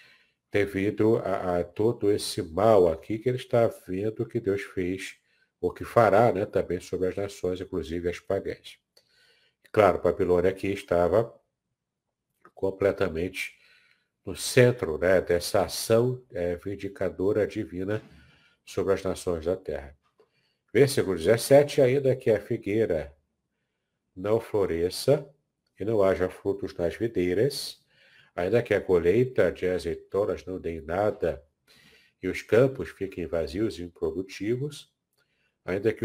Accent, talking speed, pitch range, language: Brazilian, 125 wpm, 90-120 Hz, Portuguese